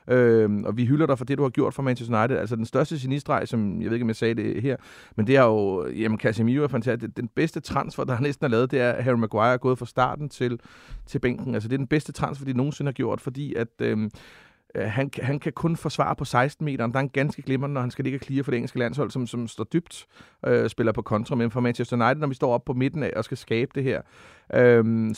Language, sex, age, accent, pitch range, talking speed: Danish, male, 40-59, native, 120-150 Hz, 270 wpm